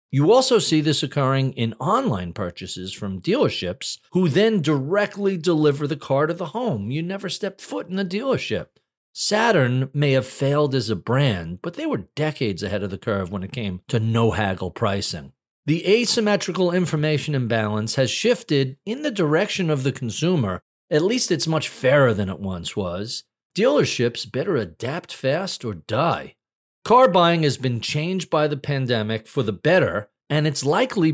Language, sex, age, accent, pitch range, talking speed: English, male, 40-59, American, 115-180 Hz, 170 wpm